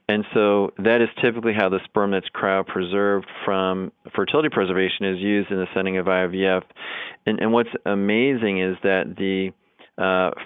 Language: English